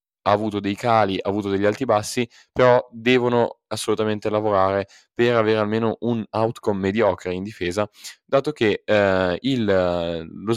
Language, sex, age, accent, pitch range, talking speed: Italian, male, 20-39, native, 95-115 Hz, 150 wpm